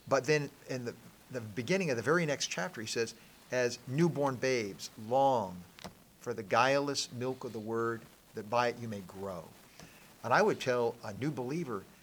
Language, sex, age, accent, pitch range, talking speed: English, male, 50-69, American, 120-155 Hz, 185 wpm